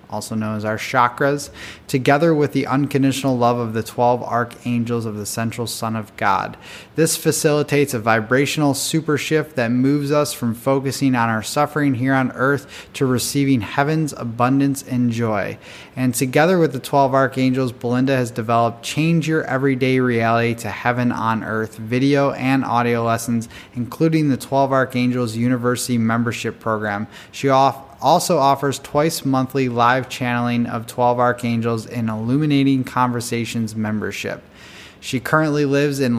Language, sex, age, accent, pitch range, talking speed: English, male, 20-39, American, 120-140 Hz, 150 wpm